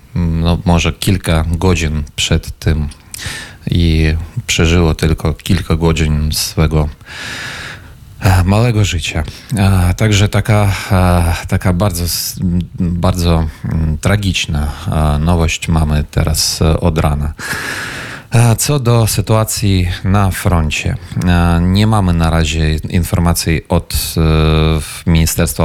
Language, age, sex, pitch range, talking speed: Polish, 30-49, male, 80-95 Hz, 85 wpm